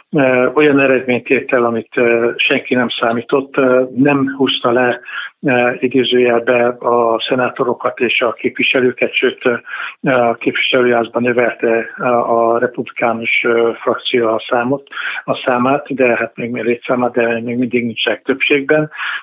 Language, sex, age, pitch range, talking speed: Hungarian, male, 60-79, 120-135 Hz, 115 wpm